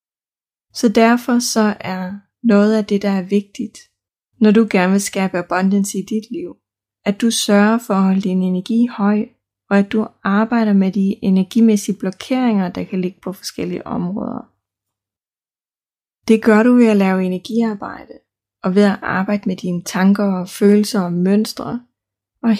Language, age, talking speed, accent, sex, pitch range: Danish, 20-39, 160 wpm, native, female, 185-220 Hz